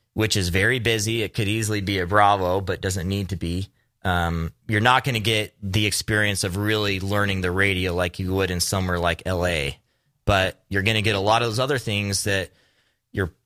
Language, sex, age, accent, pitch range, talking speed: English, male, 20-39, American, 90-105 Hz, 215 wpm